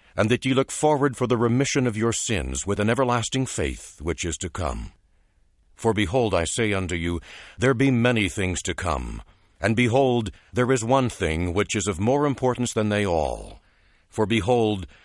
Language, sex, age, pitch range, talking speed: English, male, 60-79, 90-125 Hz, 185 wpm